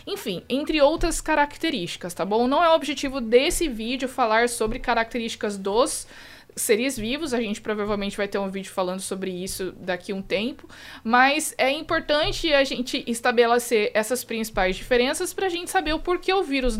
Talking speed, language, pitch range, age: 175 wpm, Portuguese, 215-310 Hz, 20-39